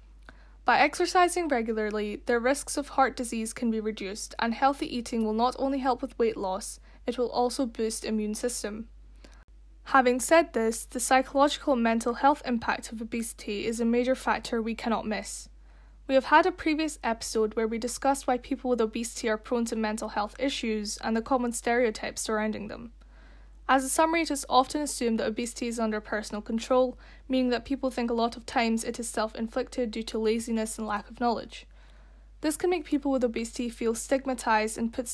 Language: English